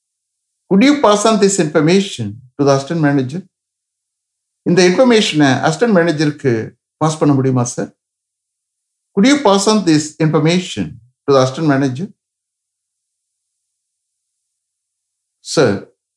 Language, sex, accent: English, male, Indian